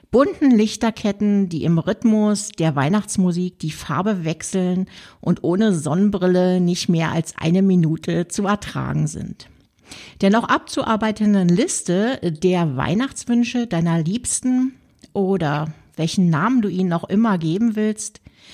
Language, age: German, 60-79